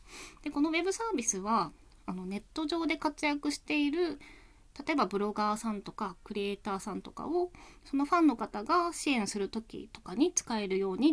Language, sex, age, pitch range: Japanese, female, 20-39, 195-295 Hz